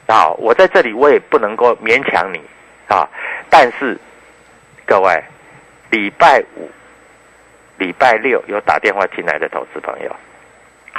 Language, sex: Chinese, male